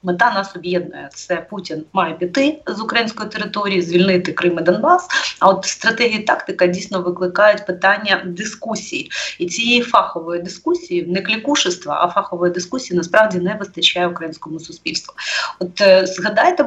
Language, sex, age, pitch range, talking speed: Ukrainian, female, 30-49, 175-220 Hz, 140 wpm